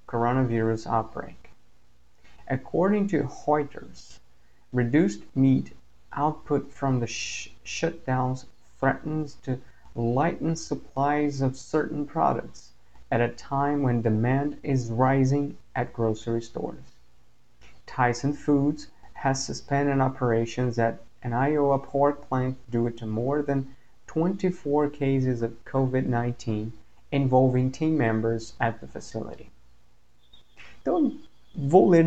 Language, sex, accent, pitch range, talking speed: Portuguese, male, American, 110-145 Hz, 105 wpm